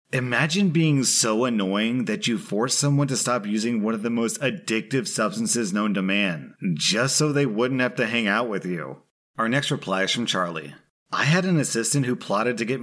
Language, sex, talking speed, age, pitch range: English, male, 205 wpm, 30-49, 100-125 Hz